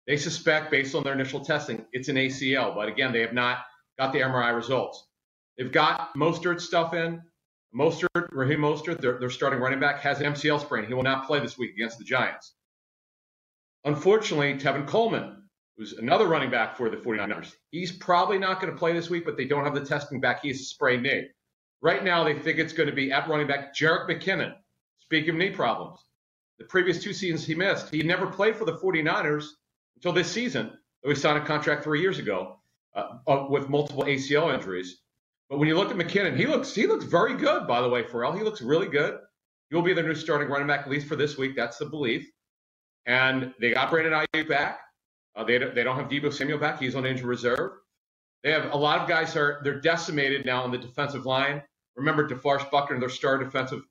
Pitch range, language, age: 135-170 Hz, English, 40-59